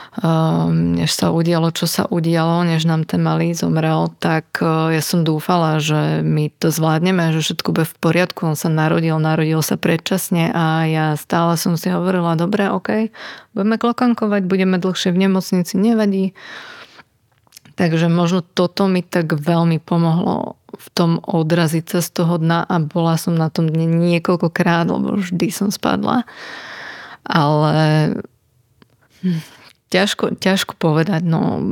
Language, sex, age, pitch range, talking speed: Slovak, female, 30-49, 160-185 Hz, 145 wpm